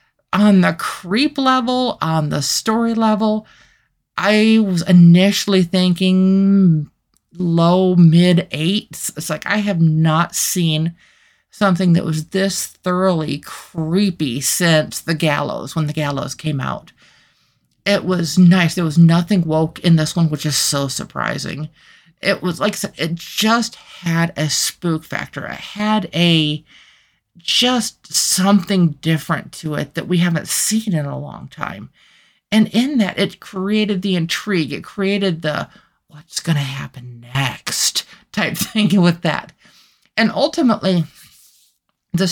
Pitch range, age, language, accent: 160-200 Hz, 50-69, English, American